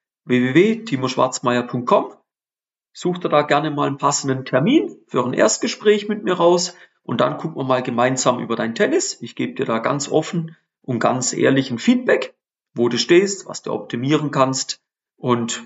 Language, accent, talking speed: German, German, 165 wpm